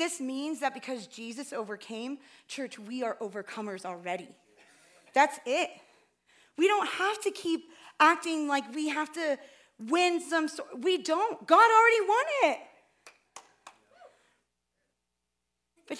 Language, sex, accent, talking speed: English, female, American, 120 wpm